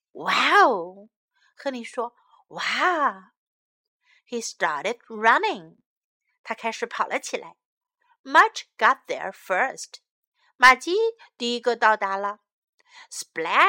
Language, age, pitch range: Chinese, 50-69, 230-375 Hz